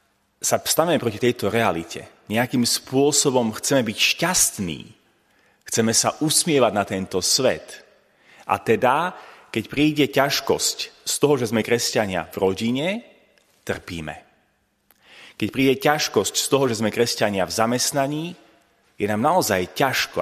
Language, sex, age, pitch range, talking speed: Slovak, male, 30-49, 115-170 Hz, 130 wpm